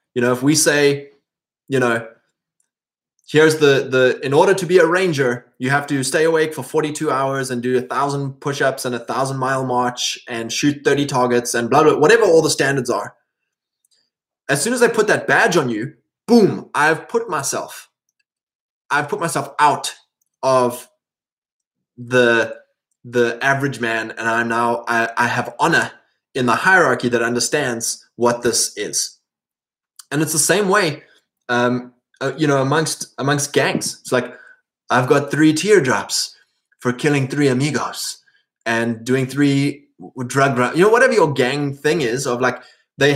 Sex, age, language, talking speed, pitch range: male, 20-39, English, 165 wpm, 125-155 Hz